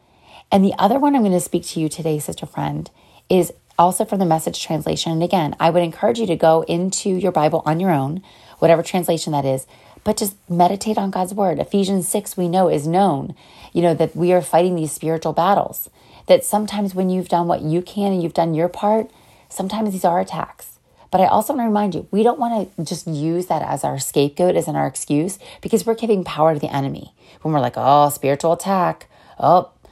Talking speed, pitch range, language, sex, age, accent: 220 wpm, 160-210 Hz, English, female, 30-49, American